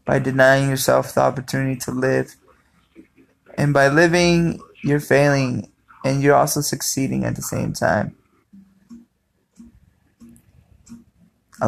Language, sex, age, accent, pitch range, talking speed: English, male, 20-39, American, 125-150 Hz, 110 wpm